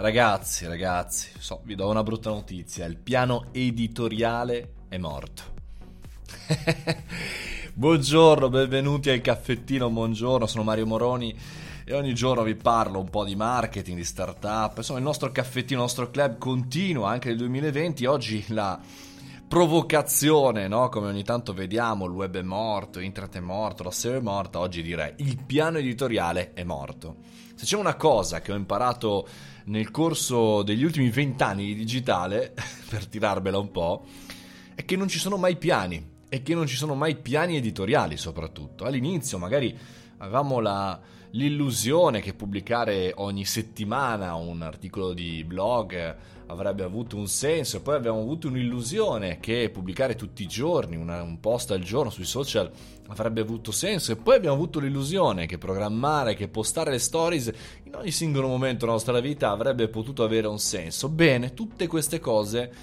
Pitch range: 95-135 Hz